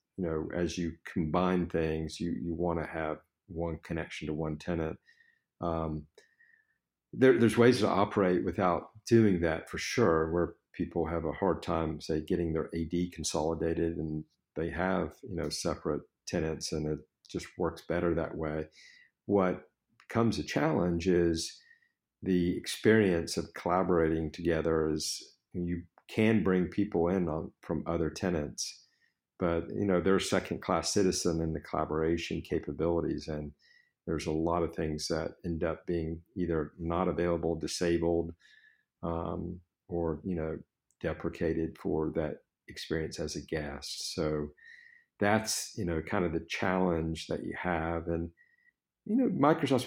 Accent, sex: American, male